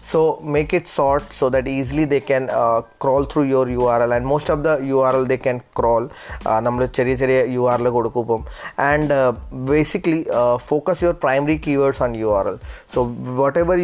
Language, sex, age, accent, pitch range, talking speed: Malayalam, male, 20-39, native, 125-150 Hz, 170 wpm